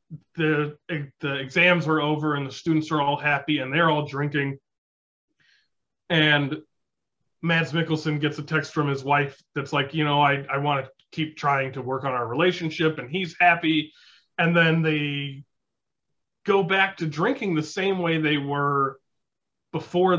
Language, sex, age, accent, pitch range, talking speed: English, male, 30-49, American, 145-175 Hz, 160 wpm